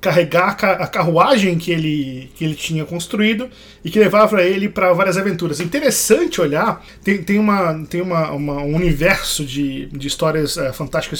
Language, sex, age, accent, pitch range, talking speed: Portuguese, male, 20-39, Brazilian, 155-200 Hz, 175 wpm